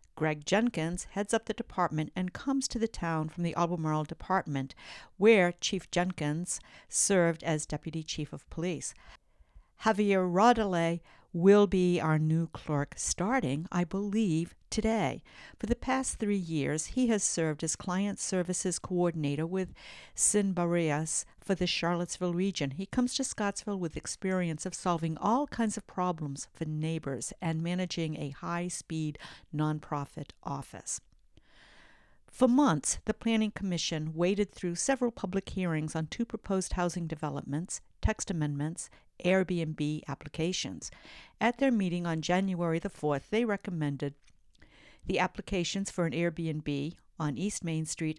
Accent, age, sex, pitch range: American, 50-69, female, 155-200 Hz